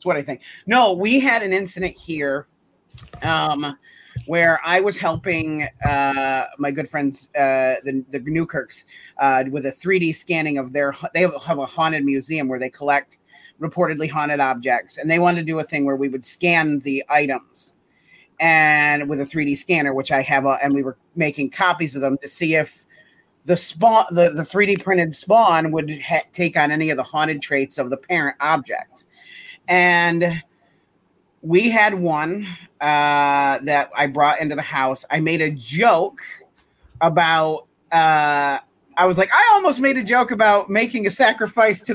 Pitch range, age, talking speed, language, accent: 145-180 Hz, 40-59, 175 wpm, English, American